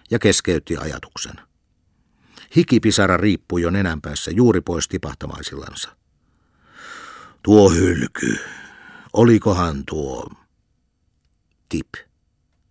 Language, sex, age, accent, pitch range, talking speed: Finnish, male, 60-79, native, 80-105 Hz, 65 wpm